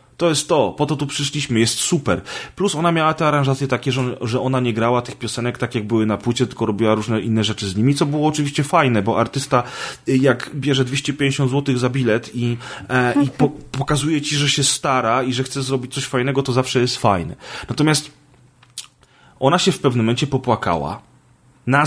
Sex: male